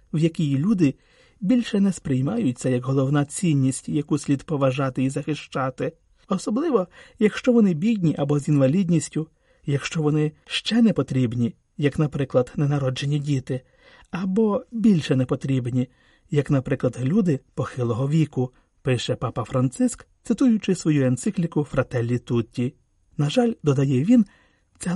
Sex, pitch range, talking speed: male, 135-200 Hz, 125 wpm